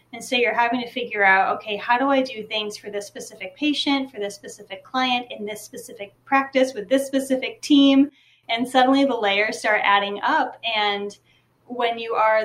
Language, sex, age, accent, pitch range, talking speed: English, female, 20-39, American, 200-250 Hz, 195 wpm